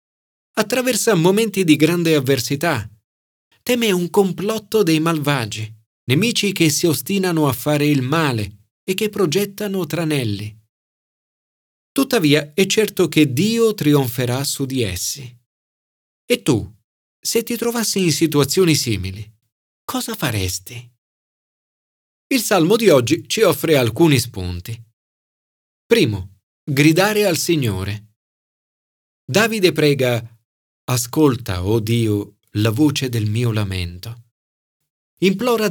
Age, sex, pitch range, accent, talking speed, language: 40-59, male, 110-170 Hz, native, 110 wpm, Italian